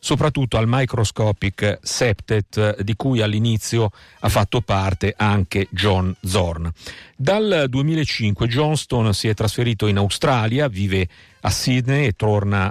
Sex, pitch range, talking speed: male, 100-125 Hz, 125 wpm